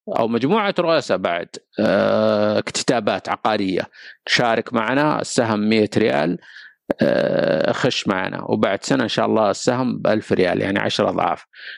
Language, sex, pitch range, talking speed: Arabic, male, 105-135 Hz, 125 wpm